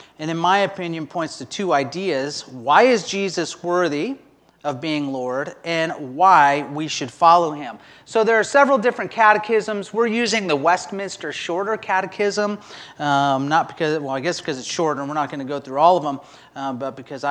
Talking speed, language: 190 wpm, English